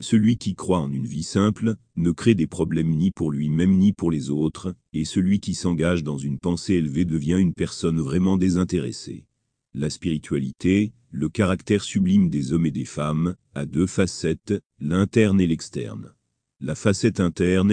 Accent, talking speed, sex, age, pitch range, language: French, 170 wpm, male, 40-59, 80-100 Hz, French